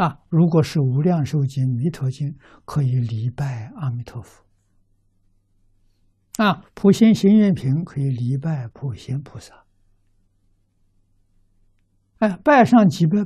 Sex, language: male, Chinese